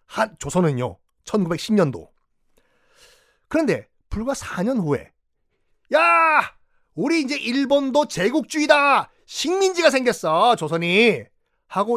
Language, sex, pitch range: Korean, male, 140-215 Hz